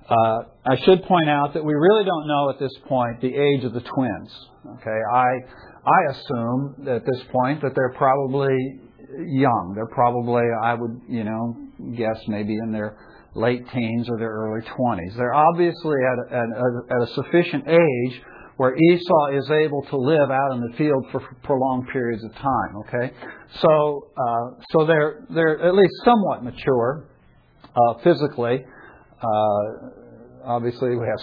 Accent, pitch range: American, 120-150 Hz